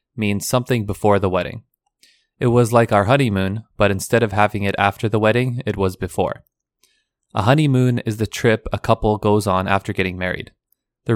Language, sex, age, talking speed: English, male, 20-39, 185 wpm